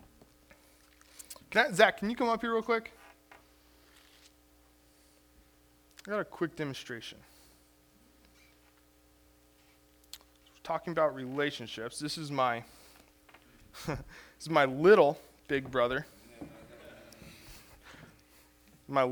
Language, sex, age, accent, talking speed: English, male, 20-39, American, 90 wpm